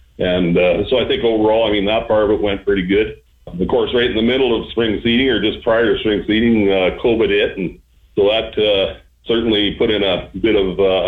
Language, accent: English, American